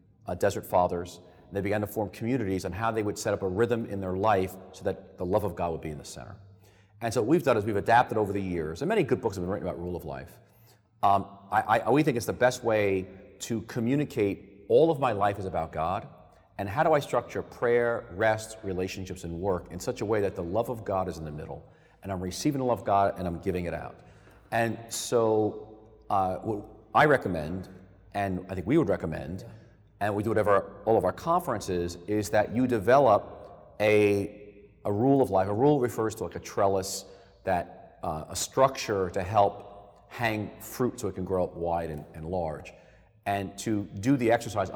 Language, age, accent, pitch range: English, 40-59, American, 90-110 Hz